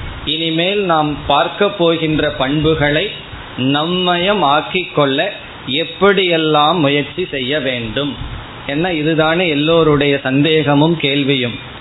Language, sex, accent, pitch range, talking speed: Tamil, male, native, 135-170 Hz, 85 wpm